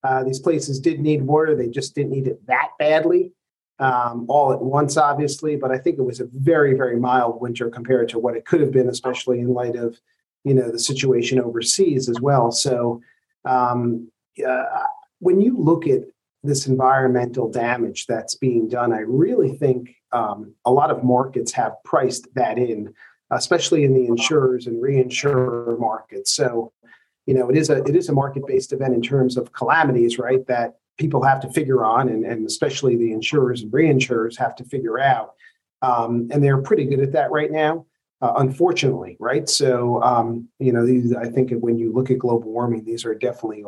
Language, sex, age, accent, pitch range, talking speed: English, male, 40-59, American, 120-140 Hz, 190 wpm